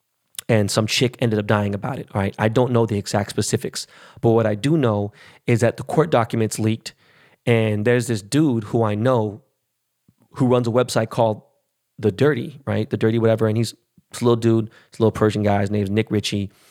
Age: 20-39